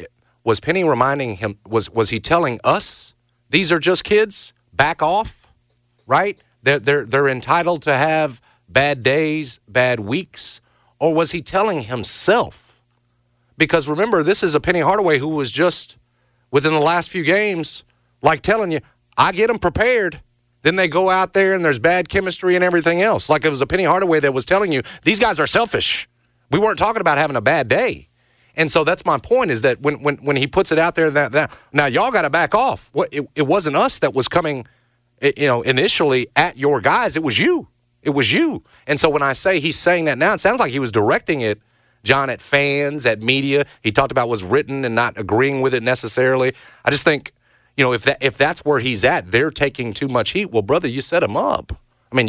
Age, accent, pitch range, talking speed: 40-59, American, 125-165 Hz, 215 wpm